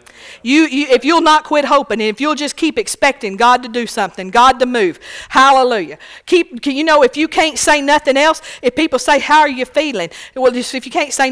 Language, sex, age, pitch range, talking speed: English, female, 50-69, 215-290 Hz, 225 wpm